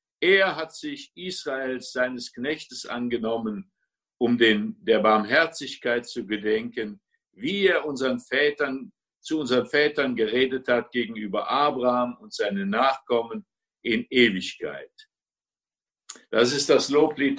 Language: German